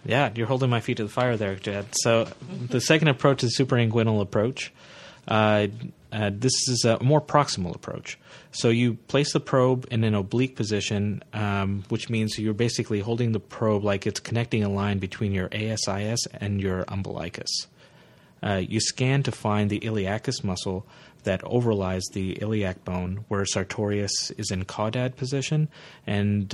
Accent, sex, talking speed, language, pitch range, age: American, male, 165 wpm, English, 100-120 Hz, 30-49